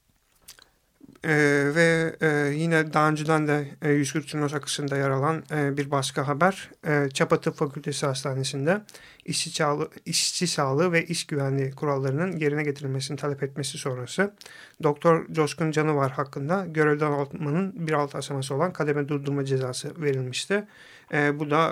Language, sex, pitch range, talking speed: Turkish, male, 140-160 Hz, 140 wpm